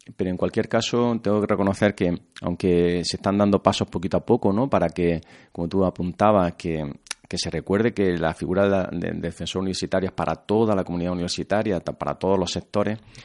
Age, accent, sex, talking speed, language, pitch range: 30-49, Spanish, male, 190 wpm, Spanish, 85-105 Hz